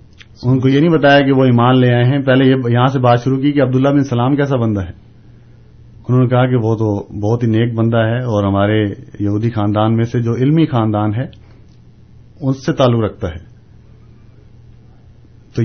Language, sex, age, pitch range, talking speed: Urdu, male, 40-59, 115-150 Hz, 185 wpm